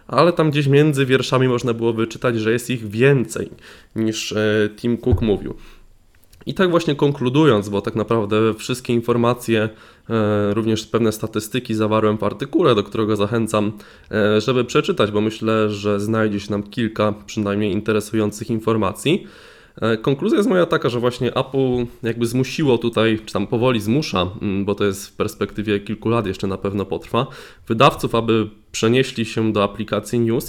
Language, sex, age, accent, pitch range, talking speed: Polish, male, 20-39, native, 105-125 Hz, 155 wpm